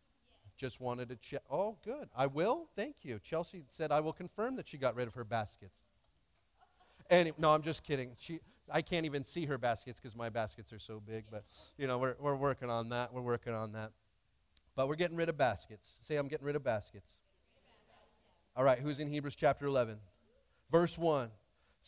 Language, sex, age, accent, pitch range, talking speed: English, male, 40-59, American, 115-145 Hz, 200 wpm